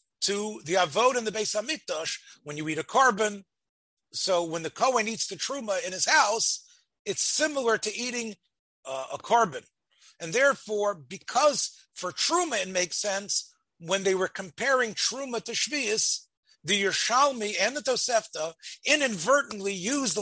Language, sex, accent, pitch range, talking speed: English, male, American, 185-250 Hz, 150 wpm